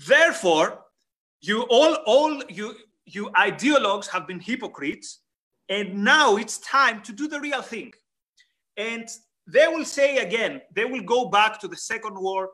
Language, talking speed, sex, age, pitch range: English, 155 wpm, male, 30-49, 185-260 Hz